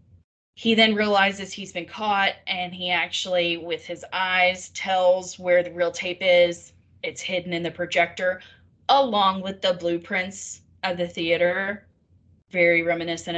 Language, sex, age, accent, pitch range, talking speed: English, female, 20-39, American, 175-215 Hz, 145 wpm